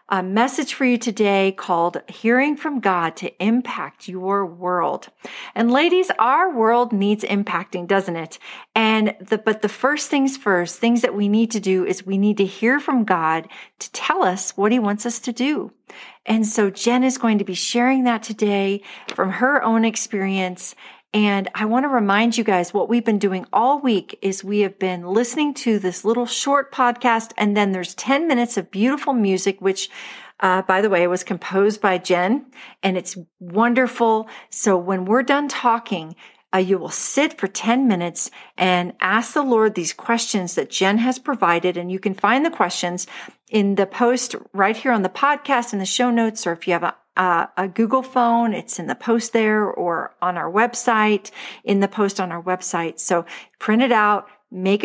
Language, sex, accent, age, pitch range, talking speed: English, female, American, 40-59, 185-240 Hz, 195 wpm